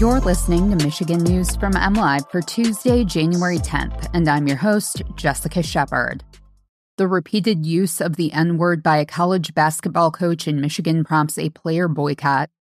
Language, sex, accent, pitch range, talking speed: English, female, American, 155-190 Hz, 160 wpm